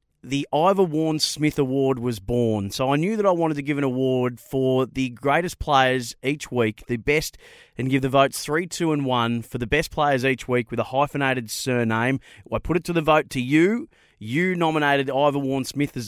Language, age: English, 30-49